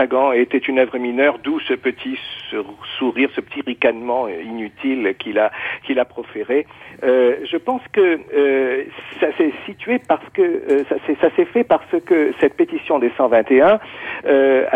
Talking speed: 165 wpm